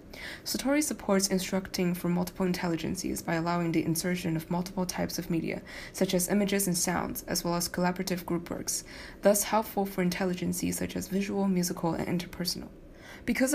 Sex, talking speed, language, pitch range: female, 165 wpm, English, 175-200 Hz